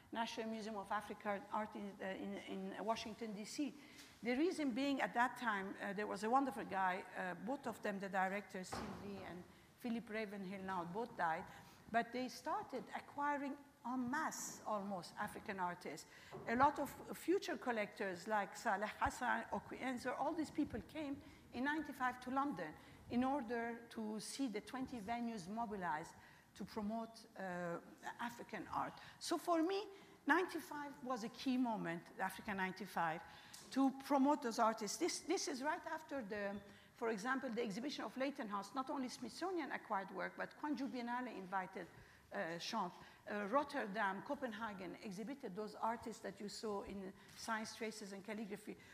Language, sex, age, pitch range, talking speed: English, female, 50-69, 205-275 Hz, 150 wpm